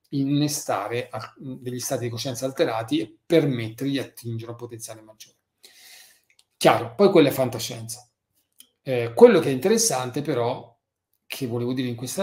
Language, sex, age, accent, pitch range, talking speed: Italian, male, 40-59, native, 115-155 Hz, 140 wpm